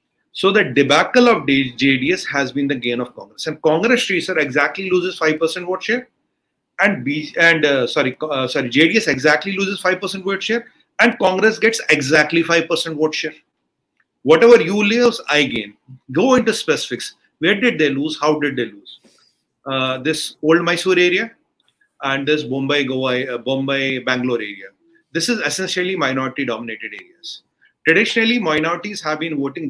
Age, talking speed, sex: 30-49, 160 wpm, male